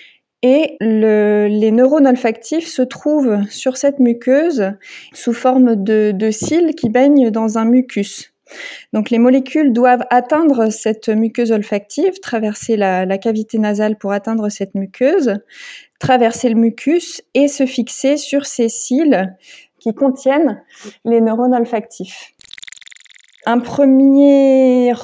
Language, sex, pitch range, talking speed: French, female, 220-265 Hz, 125 wpm